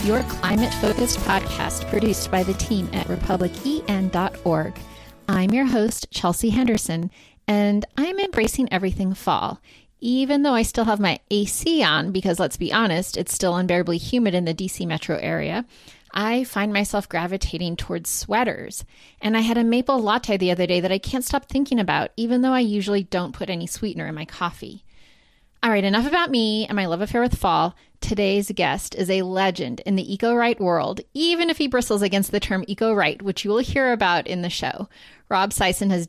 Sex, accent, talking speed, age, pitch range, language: female, American, 185 wpm, 30-49, 175-220 Hz, English